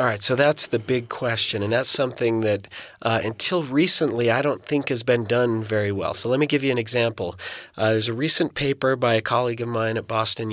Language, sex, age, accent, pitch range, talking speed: English, male, 30-49, American, 110-135 Hz, 235 wpm